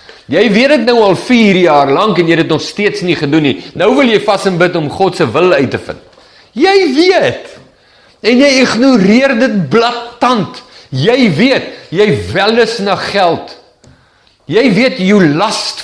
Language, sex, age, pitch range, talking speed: English, male, 50-69, 155-210 Hz, 175 wpm